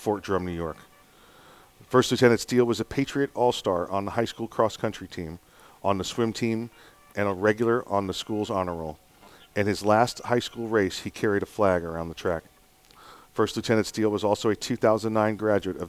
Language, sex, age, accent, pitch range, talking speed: English, male, 40-59, American, 95-110 Hz, 195 wpm